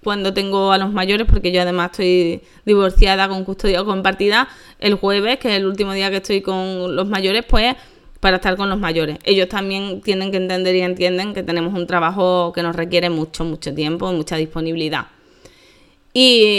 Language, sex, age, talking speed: Spanish, female, 20-39, 185 wpm